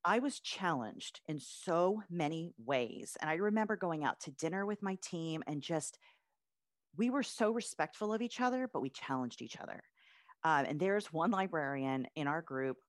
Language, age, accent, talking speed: English, 40-59, American, 180 wpm